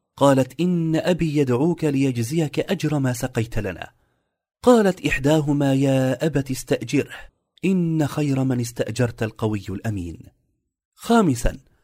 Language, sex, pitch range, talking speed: Arabic, male, 120-165 Hz, 105 wpm